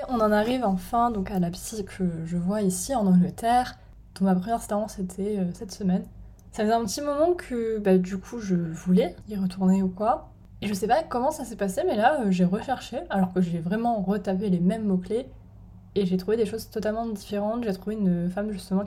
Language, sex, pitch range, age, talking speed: French, female, 185-225 Hz, 20-39, 225 wpm